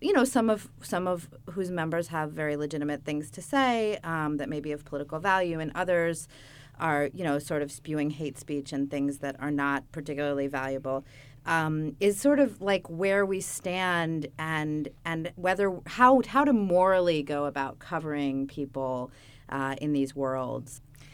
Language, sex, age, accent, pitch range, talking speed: English, female, 30-49, American, 140-185 Hz, 175 wpm